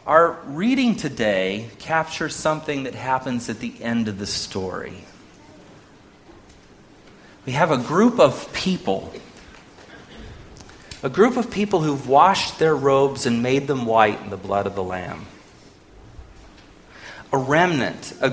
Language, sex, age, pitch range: English, male, 30-49, 105-160 Hz